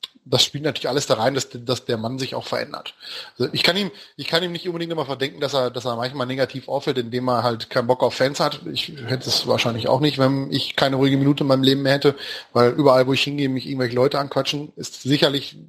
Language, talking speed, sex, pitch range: German, 255 wpm, male, 120-140 Hz